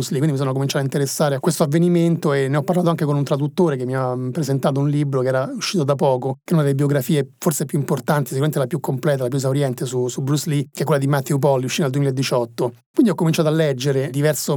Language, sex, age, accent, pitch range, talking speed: Italian, male, 30-49, native, 140-165 Hz, 260 wpm